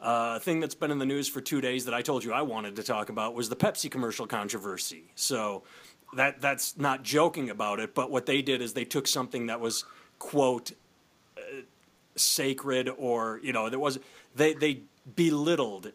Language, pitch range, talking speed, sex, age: English, 120-145 Hz, 195 wpm, male, 30-49